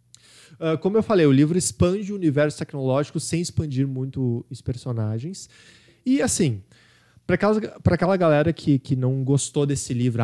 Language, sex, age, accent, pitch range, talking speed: Portuguese, male, 20-39, Brazilian, 130-175 Hz, 140 wpm